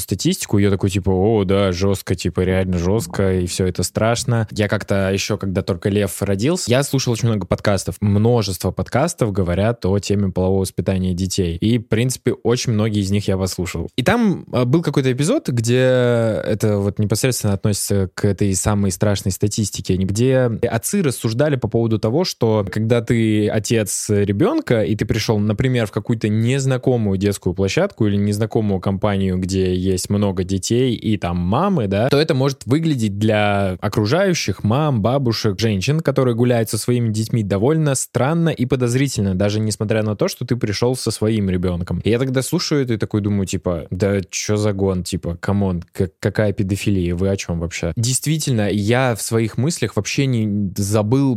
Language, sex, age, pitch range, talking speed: Russian, male, 20-39, 100-120 Hz, 175 wpm